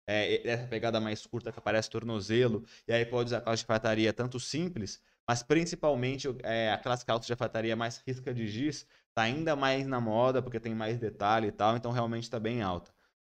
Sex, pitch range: male, 105-125 Hz